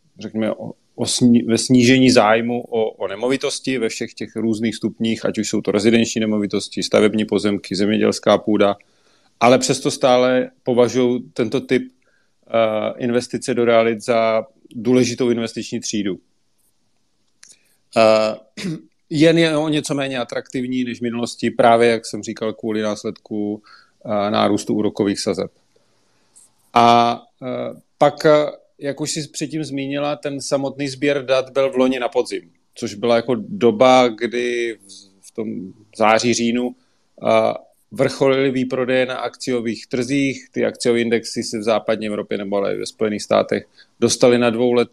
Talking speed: 140 wpm